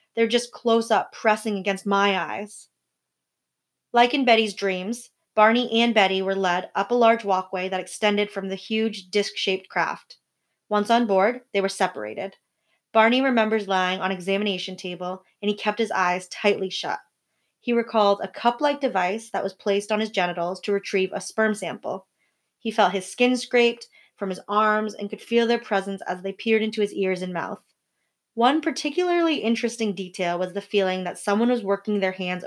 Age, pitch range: 20-39, 190-230 Hz